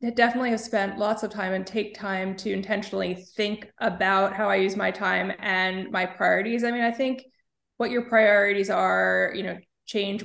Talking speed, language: 195 wpm, English